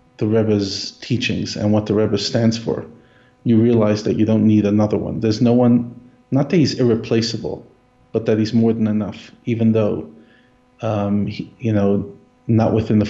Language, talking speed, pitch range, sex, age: English, 175 wpm, 105-125 Hz, male, 40-59